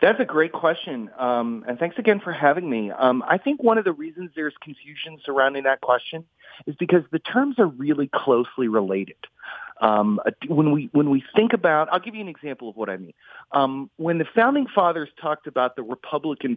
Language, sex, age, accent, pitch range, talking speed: English, male, 40-59, American, 130-205 Hz, 205 wpm